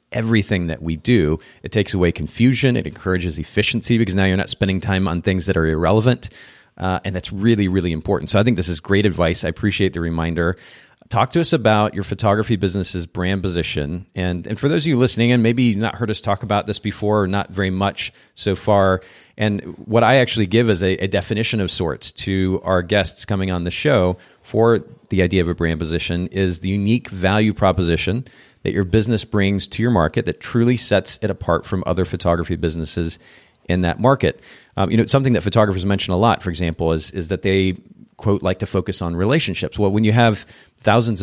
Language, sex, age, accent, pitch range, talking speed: English, male, 40-59, American, 90-110 Hz, 215 wpm